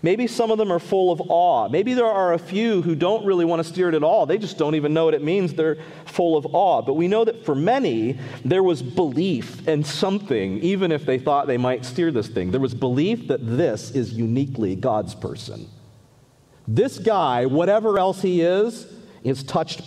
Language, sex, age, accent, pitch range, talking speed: English, male, 40-59, American, 130-185 Hz, 215 wpm